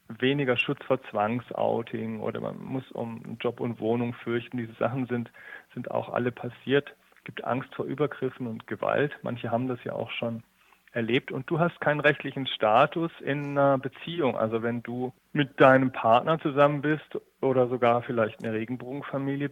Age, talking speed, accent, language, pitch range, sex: 40-59, 170 wpm, German, German, 120-140 Hz, male